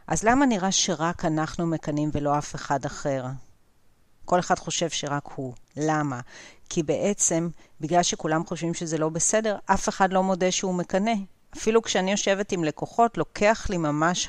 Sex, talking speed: female, 160 wpm